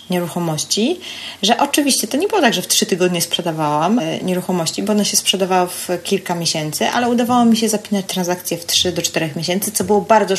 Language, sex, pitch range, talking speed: Polish, female, 175-210 Hz, 195 wpm